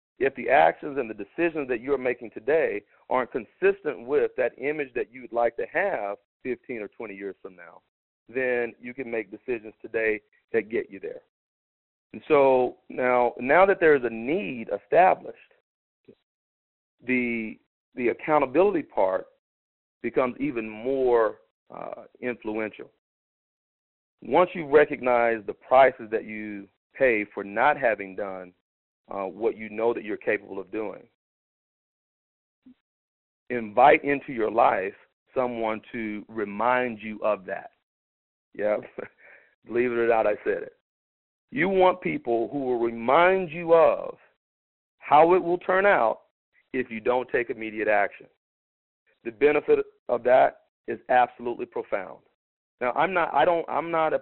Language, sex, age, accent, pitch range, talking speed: English, male, 40-59, American, 110-180 Hz, 140 wpm